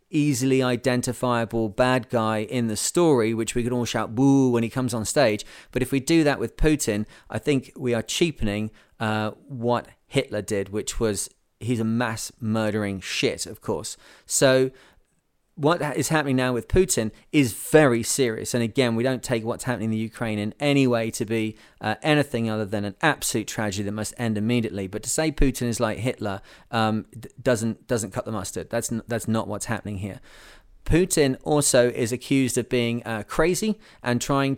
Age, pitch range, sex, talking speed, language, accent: 30-49, 110-140 Hz, male, 190 wpm, English, British